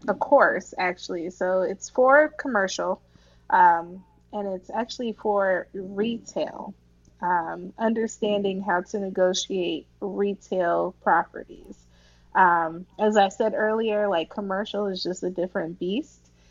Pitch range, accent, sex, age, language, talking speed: 180-215 Hz, American, female, 20-39, English, 115 wpm